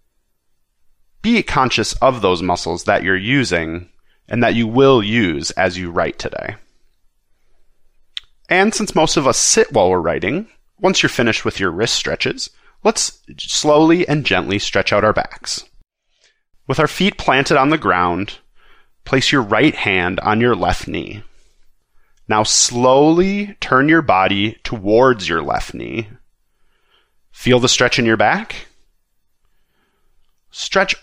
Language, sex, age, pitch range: English, male, 30-49, 100-155 Hz